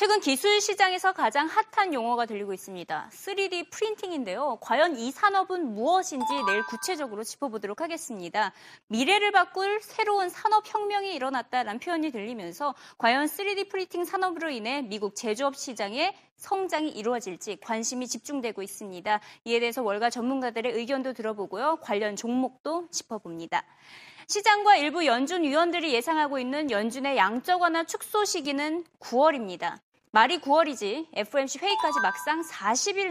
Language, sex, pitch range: Korean, female, 230-360 Hz